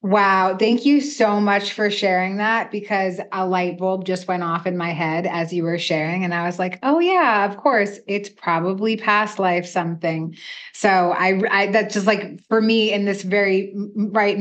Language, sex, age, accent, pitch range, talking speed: English, female, 20-39, American, 185-225 Hz, 195 wpm